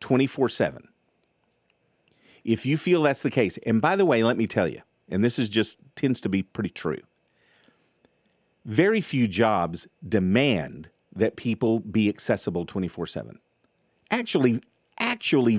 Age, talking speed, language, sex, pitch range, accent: 50-69, 150 wpm, English, male, 100-135 Hz, American